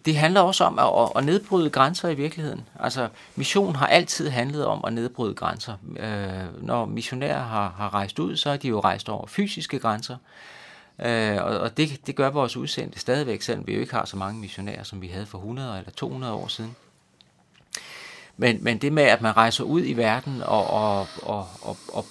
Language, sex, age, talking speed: Danish, male, 30-49, 185 wpm